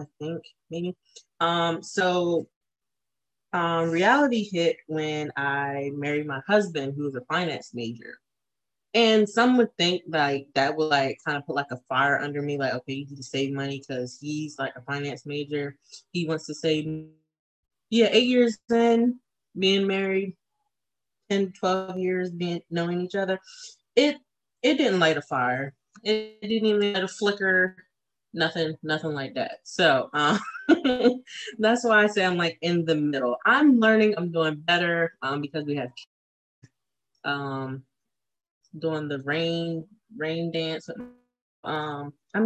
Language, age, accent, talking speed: English, 20-39, American, 155 wpm